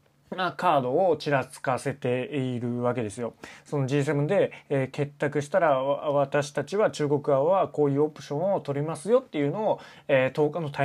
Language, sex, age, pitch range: Japanese, male, 20-39, 125-175 Hz